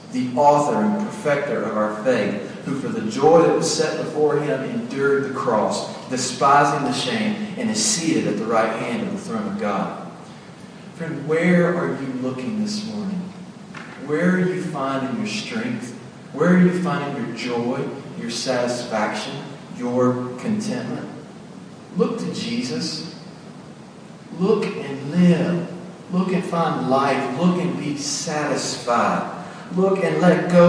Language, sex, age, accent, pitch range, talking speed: English, male, 40-59, American, 135-195 Hz, 145 wpm